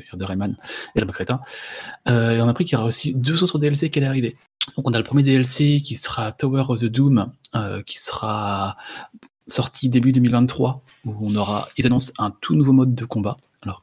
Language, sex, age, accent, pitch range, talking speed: French, male, 20-39, French, 105-130 Hz, 215 wpm